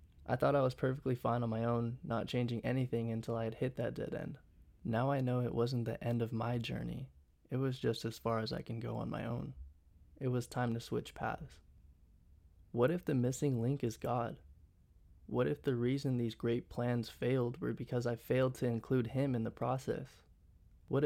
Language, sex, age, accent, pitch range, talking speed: English, male, 20-39, American, 115-125 Hz, 210 wpm